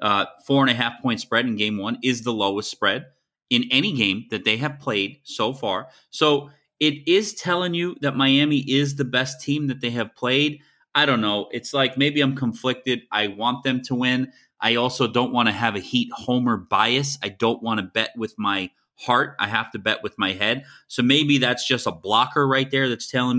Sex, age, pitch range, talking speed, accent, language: male, 30-49, 120-145 Hz, 220 wpm, American, English